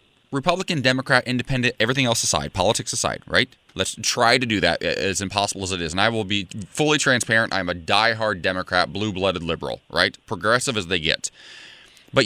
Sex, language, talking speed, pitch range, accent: male, English, 180 wpm, 95-125 Hz, American